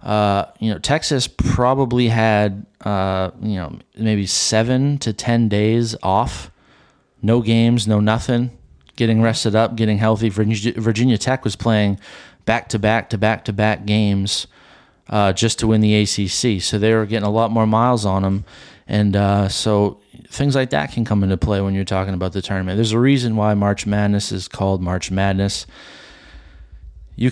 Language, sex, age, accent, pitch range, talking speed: English, male, 30-49, American, 95-110 Hz, 175 wpm